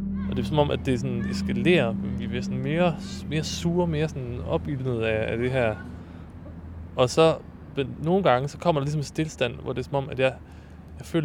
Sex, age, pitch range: male, 20-39, 90-140 Hz